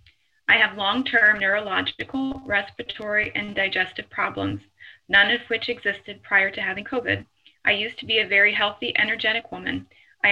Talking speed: 150 wpm